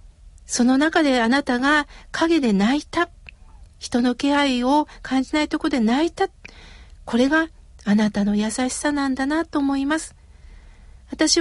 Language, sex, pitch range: Japanese, female, 240-315 Hz